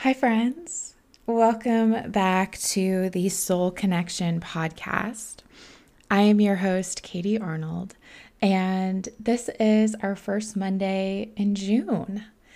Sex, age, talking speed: female, 20-39, 110 wpm